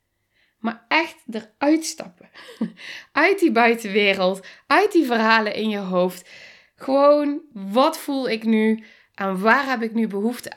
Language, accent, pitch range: Dutch, Dutch, 200-270 Hz